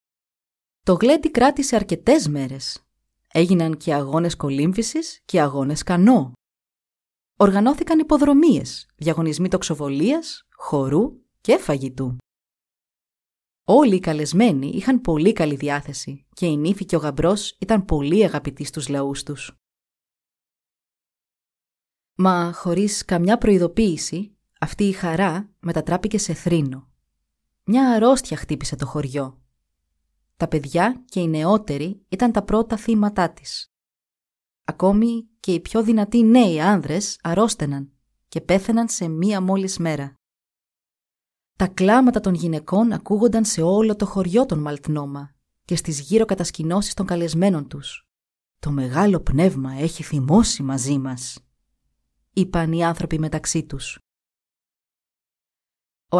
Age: 20-39